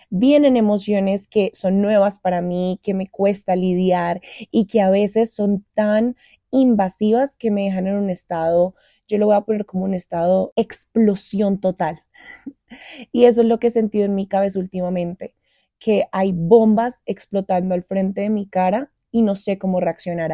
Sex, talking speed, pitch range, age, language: female, 175 wpm, 195-235 Hz, 20-39, Spanish